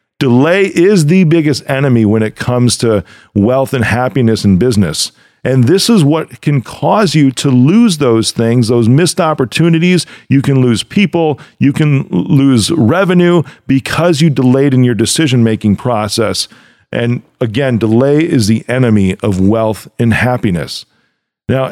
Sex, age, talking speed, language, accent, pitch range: male, 40-59, 150 wpm, English, American, 115-160 Hz